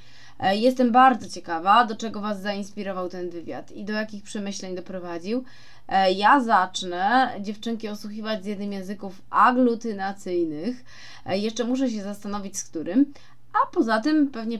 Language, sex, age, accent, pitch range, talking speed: Polish, female, 20-39, native, 185-230 Hz, 130 wpm